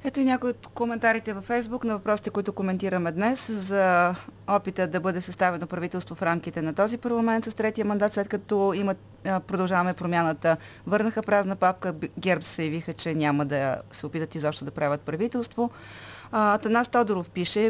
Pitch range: 160-210 Hz